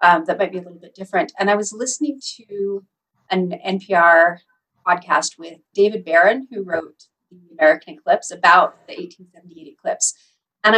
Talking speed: 160 wpm